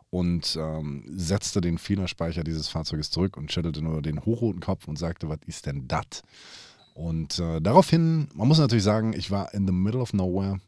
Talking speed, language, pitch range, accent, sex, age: 190 wpm, German, 80-105 Hz, German, male, 30-49